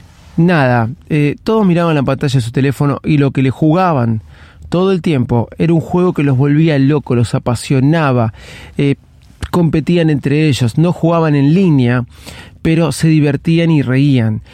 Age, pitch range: 30-49, 120-155 Hz